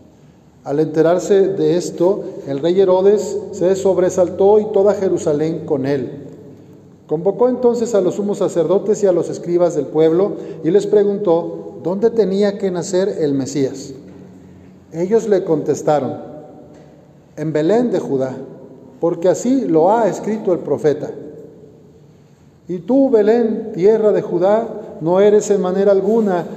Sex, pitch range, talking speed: male, 155-205 Hz, 135 wpm